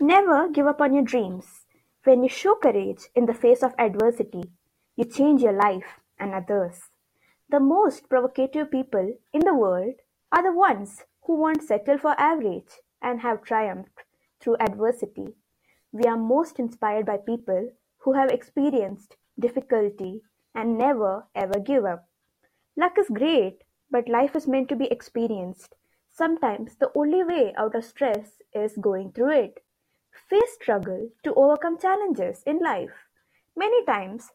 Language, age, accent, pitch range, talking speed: English, 20-39, Indian, 220-290 Hz, 150 wpm